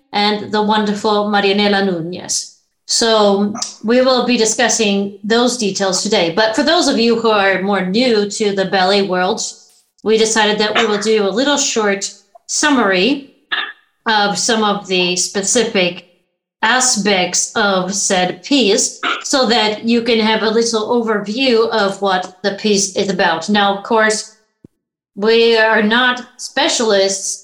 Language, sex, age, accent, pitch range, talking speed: English, female, 30-49, American, 195-225 Hz, 145 wpm